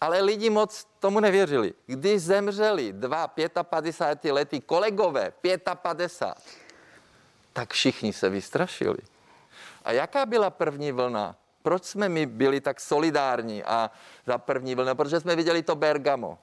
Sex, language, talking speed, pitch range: male, Czech, 130 wpm, 135-170 Hz